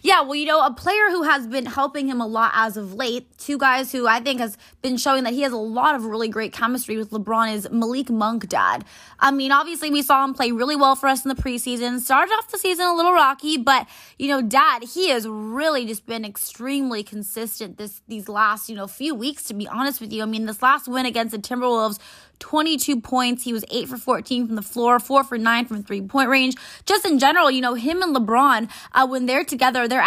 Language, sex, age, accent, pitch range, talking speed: English, female, 20-39, American, 225-275 Hz, 240 wpm